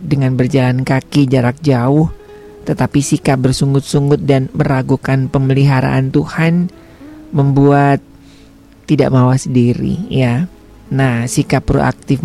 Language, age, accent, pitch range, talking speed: Indonesian, 40-59, native, 130-160 Hz, 100 wpm